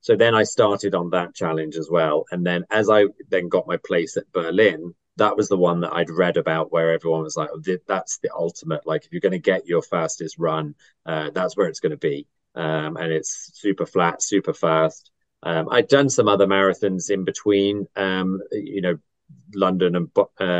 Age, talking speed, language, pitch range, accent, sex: 30-49, 205 wpm, English, 85-100 Hz, British, male